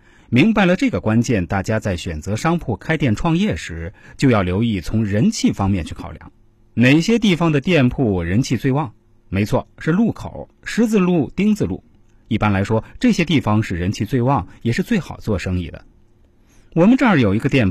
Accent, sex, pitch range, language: native, male, 105-155 Hz, Chinese